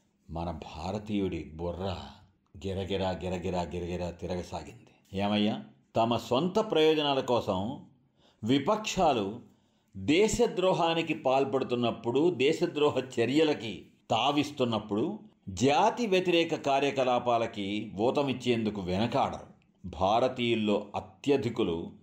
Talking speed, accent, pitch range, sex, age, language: 70 wpm, native, 90-130 Hz, male, 50-69, Telugu